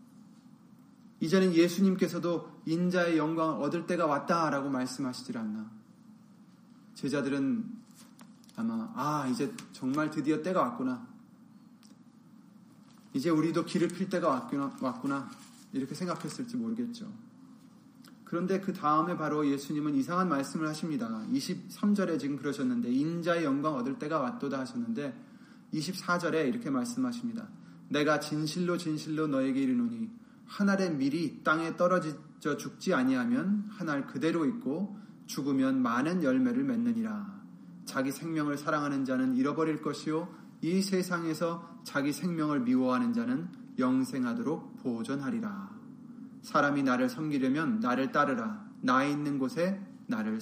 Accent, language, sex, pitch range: native, Korean, male, 160-235 Hz